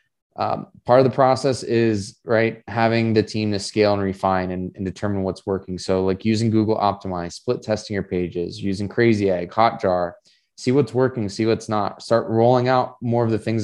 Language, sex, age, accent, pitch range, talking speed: English, male, 20-39, American, 100-115 Hz, 200 wpm